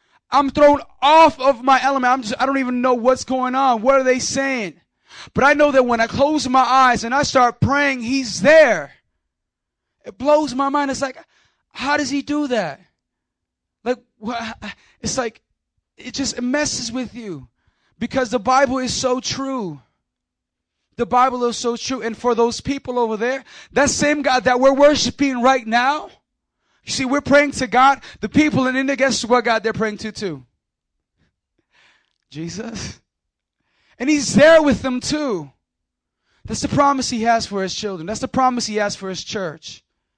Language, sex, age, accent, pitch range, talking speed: English, male, 20-39, American, 190-265 Hz, 175 wpm